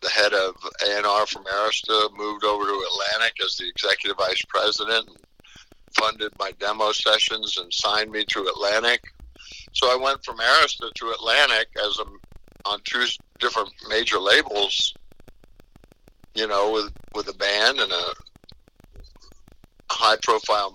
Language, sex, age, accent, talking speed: English, male, 60-79, American, 140 wpm